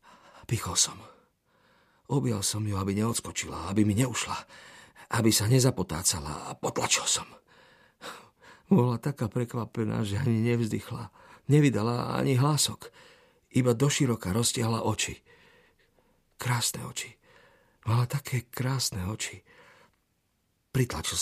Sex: male